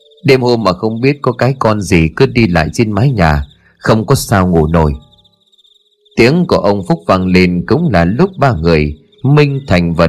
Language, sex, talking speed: Vietnamese, male, 200 wpm